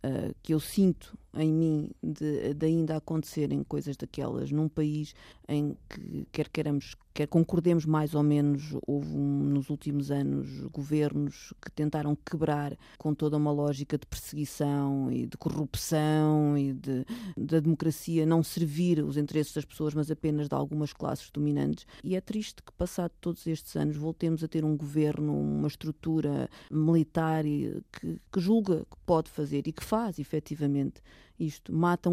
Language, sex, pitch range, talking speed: Portuguese, female, 145-160 Hz, 155 wpm